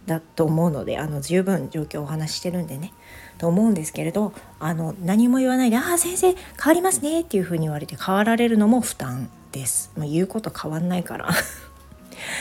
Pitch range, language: 145-215 Hz, Japanese